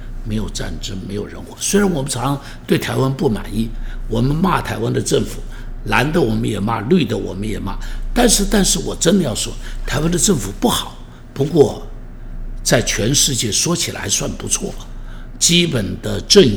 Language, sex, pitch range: Chinese, male, 110-160 Hz